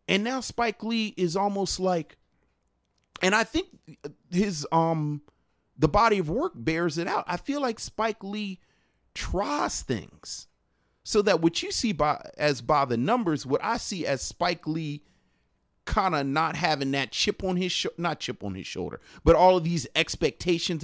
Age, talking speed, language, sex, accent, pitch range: 40-59, 175 wpm, English, male, American, 125-195 Hz